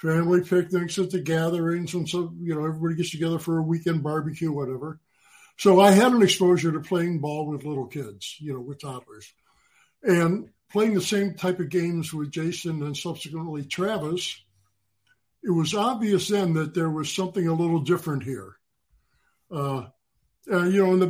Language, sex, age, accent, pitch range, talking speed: English, male, 60-79, American, 155-185 Hz, 175 wpm